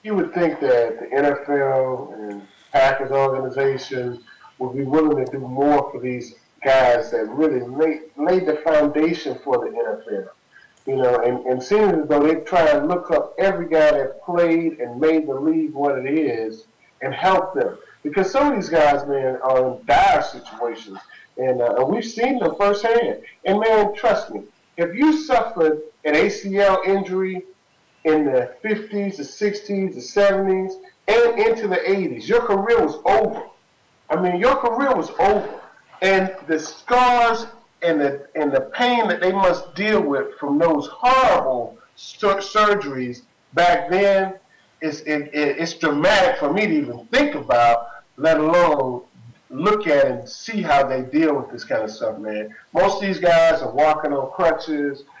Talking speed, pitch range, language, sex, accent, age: 165 wpm, 140-205 Hz, English, male, American, 40-59